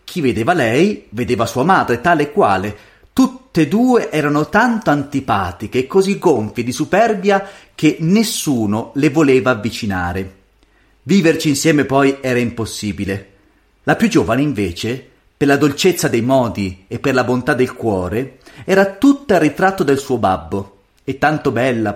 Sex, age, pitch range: male, 40-59, 110-175 Hz